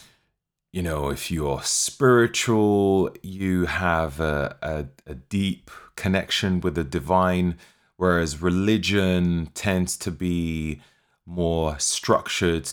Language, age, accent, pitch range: English, 30-49, British, 80-95 Hz